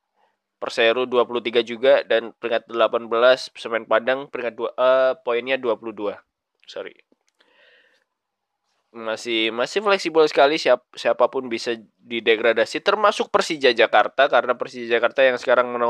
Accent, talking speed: native, 120 wpm